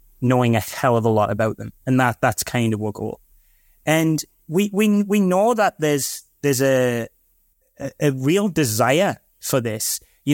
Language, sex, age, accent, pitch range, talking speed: English, male, 10-29, British, 115-135 Hz, 180 wpm